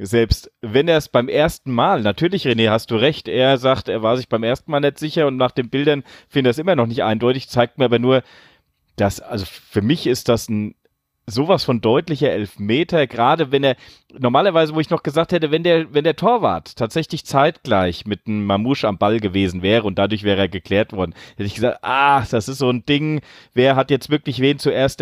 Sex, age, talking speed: male, 30-49, 220 wpm